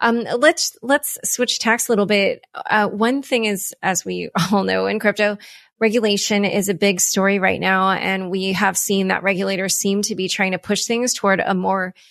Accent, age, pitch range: American, 30-49, 190-215 Hz